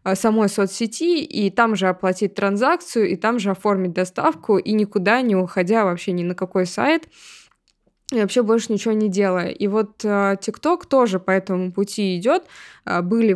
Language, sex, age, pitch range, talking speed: Russian, female, 20-39, 180-210 Hz, 160 wpm